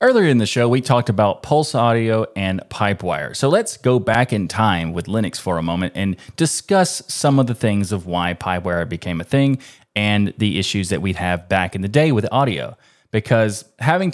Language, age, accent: English, 20-39, American